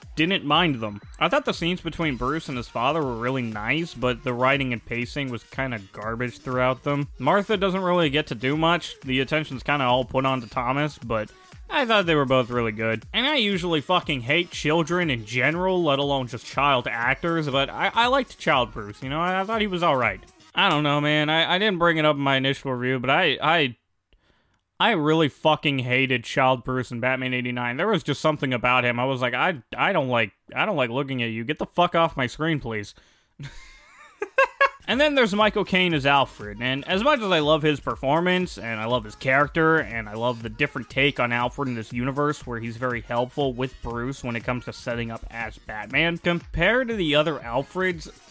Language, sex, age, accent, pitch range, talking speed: English, male, 20-39, American, 125-165 Hz, 220 wpm